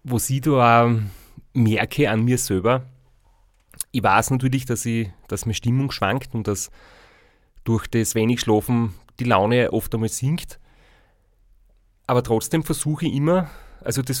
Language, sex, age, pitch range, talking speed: German, male, 30-49, 110-135 Hz, 150 wpm